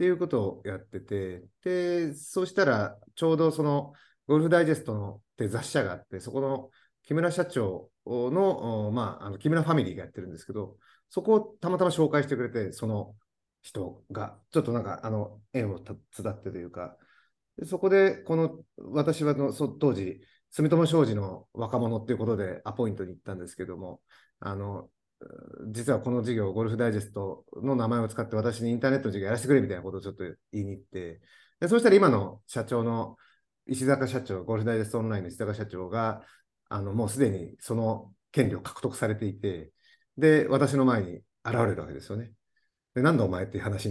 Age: 30-49